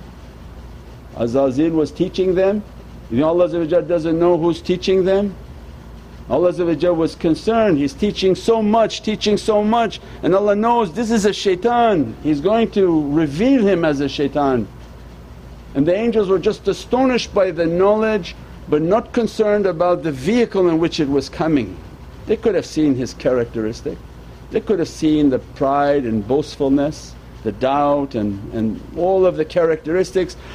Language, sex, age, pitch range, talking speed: English, male, 60-79, 120-190 Hz, 155 wpm